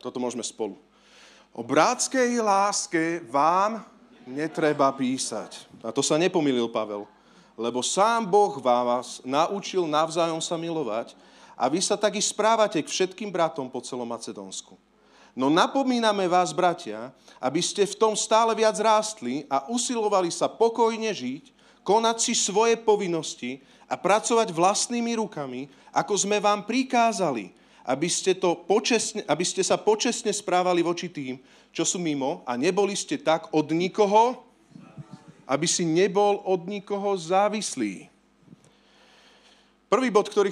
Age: 40-59